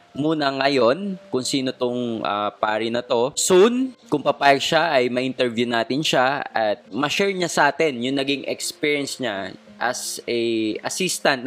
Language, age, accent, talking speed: Filipino, 20-39, native, 150 wpm